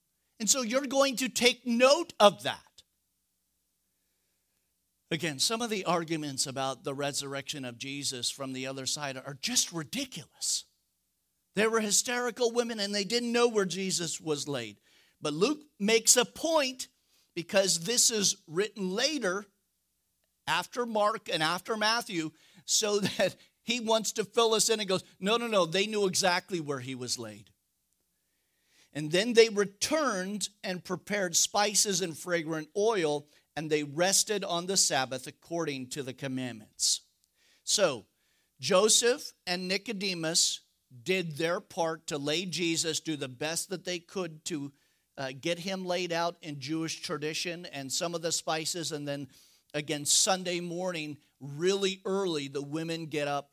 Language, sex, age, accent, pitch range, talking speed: English, male, 50-69, American, 145-205 Hz, 150 wpm